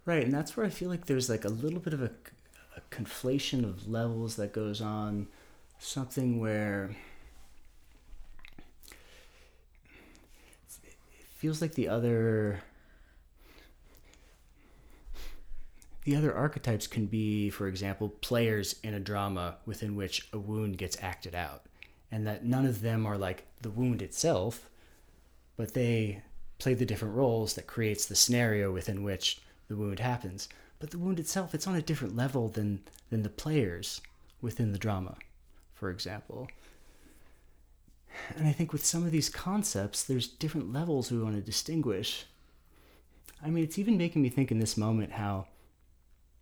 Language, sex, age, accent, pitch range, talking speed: English, male, 30-49, American, 90-125 Hz, 150 wpm